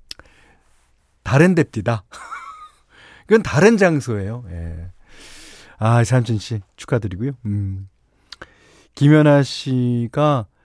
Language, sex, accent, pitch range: Korean, male, native, 105-160 Hz